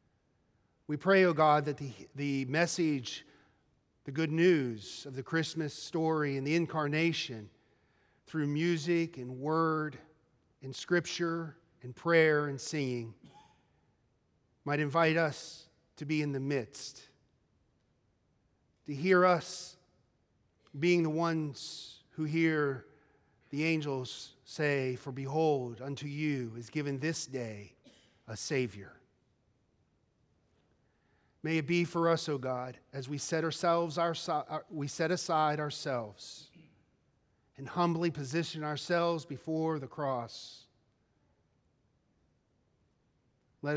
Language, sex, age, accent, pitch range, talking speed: English, male, 40-59, American, 135-160 Hz, 110 wpm